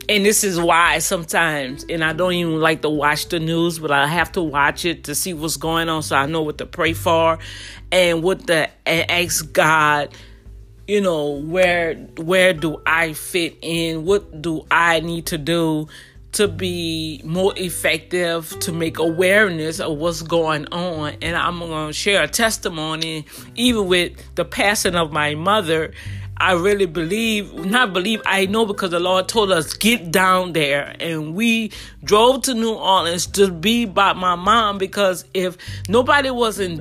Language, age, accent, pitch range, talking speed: English, 30-49, American, 160-210 Hz, 175 wpm